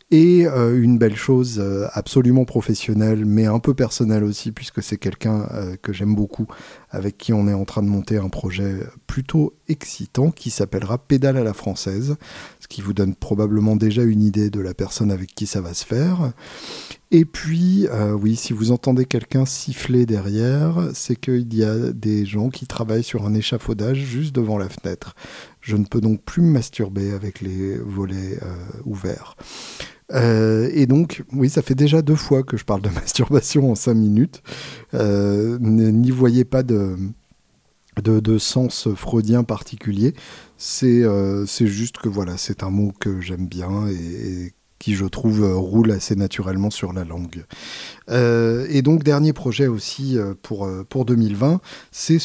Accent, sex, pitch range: French, male, 100-130 Hz